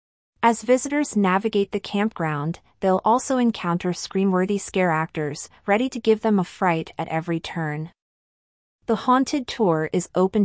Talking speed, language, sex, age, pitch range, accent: 145 wpm, English, female, 30-49, 170-210 Hz, American